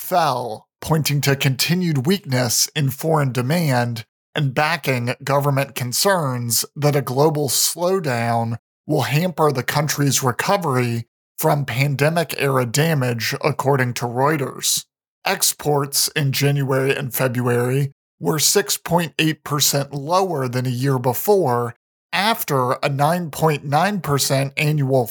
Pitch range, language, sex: 135-165 Hz, English, male